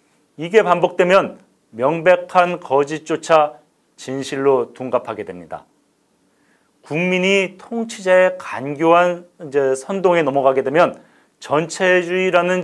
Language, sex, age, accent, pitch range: Korean, male, 40-59, native, 140-180 Hz